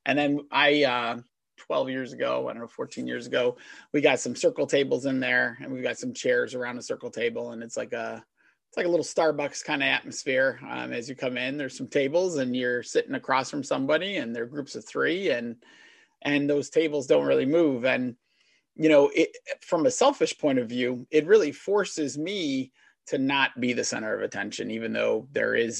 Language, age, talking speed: English, 30-49, 215 wpm